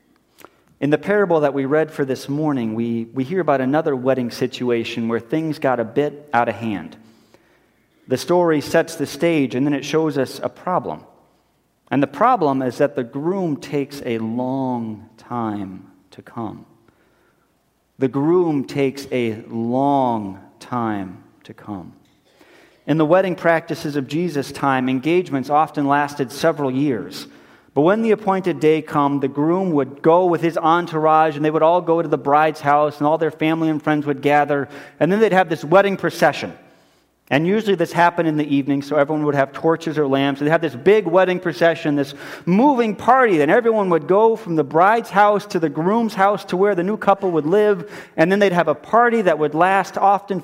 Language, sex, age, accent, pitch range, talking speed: English, male, 40-59, American, 135-175 Hz, 190 wpm